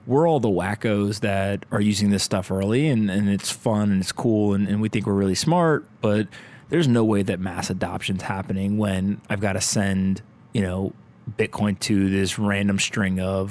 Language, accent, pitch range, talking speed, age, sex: English, American, 100-115 Hz, 200 wpm, 20-39, male